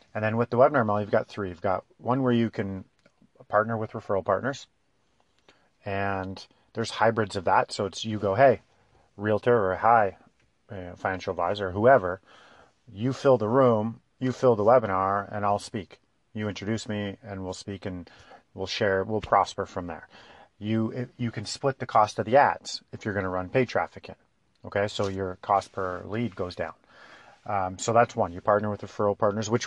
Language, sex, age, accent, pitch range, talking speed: English, male, 30-49, American, 95-115 Hz, 195 wpm